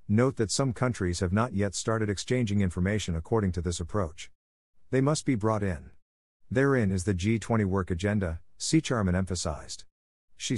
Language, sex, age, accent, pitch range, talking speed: English, male, 50-69, American, 90-110 Hz, 165 wpm